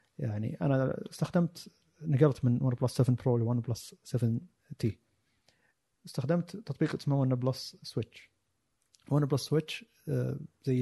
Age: 30-49